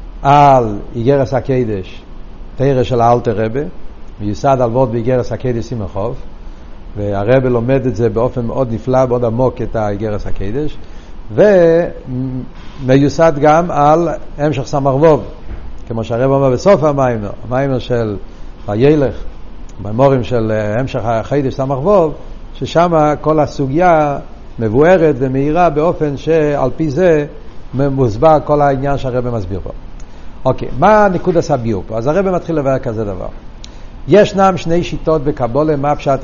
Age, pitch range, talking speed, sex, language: 60-79, 110-145 Hz, 130 wpm, male, Hebrew